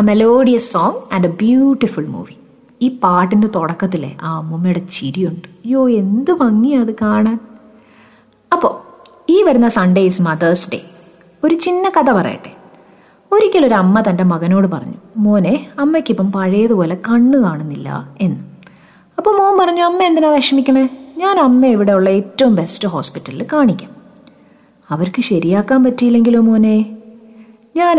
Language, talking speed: Malayalam, 120 wpm